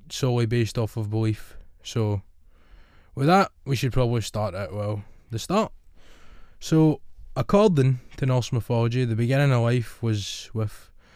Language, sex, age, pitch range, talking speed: English, male, 20-39, 105-125 Hz, 145 wpm